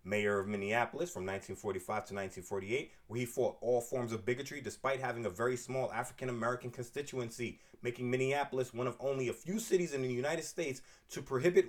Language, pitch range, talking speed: English, 125-155 Hz, 180 wpm